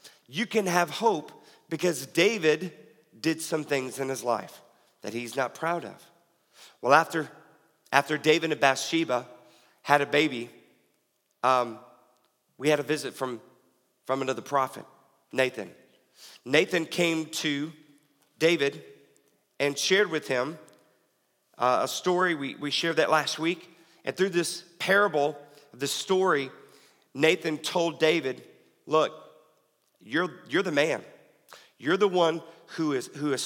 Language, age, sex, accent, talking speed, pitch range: English, 40-59, male, American, 135 wpm, 130-160 Hz